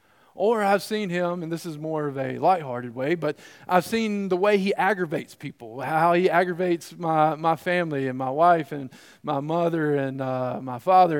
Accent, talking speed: American, 195 wpm